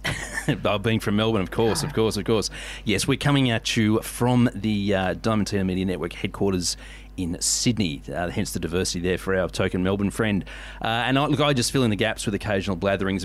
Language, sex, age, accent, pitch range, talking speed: English, male, 30-49, Australian, 100-130 Hz, 205 wpm